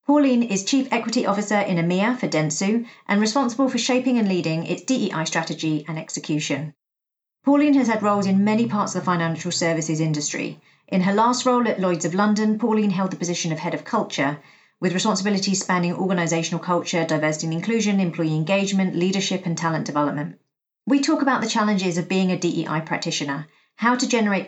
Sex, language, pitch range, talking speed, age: female, English, 165-215 Hz, 185 wpm, 40-59